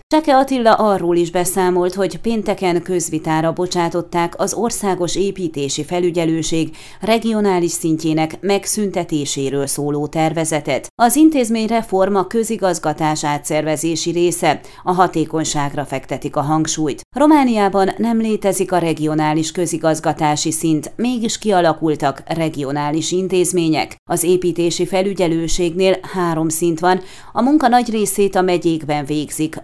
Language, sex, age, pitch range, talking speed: Hungarian, female, 30-49, 155-195 Hz, 105 wpm